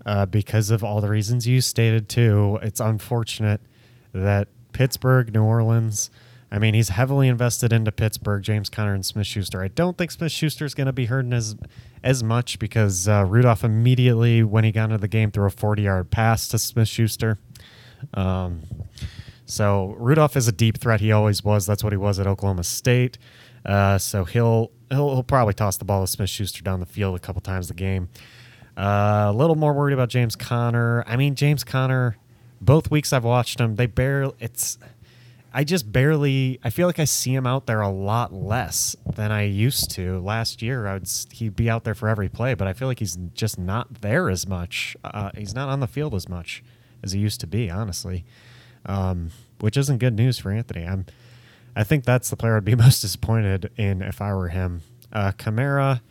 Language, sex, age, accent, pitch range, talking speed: English, male, 30-49, American, 105-125 Hz, 200 wpm